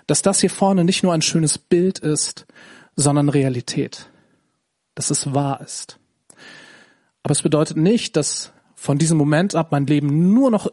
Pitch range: 145-185 Hz